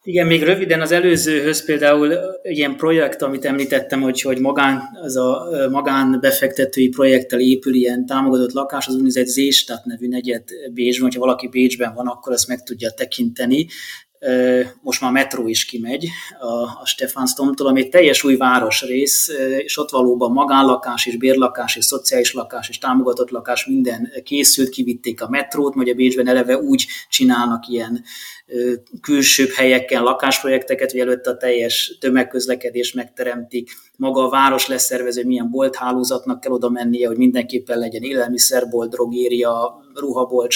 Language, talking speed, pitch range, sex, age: Hungarian, 145 wpm, 125-140 Hz, male, 30-49